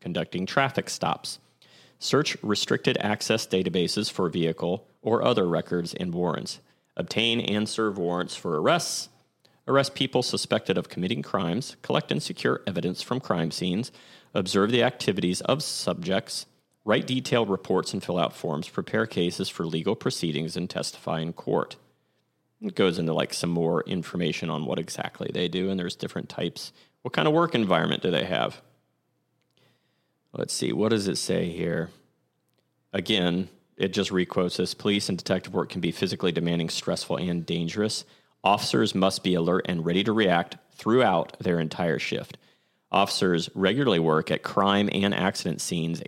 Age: 30-49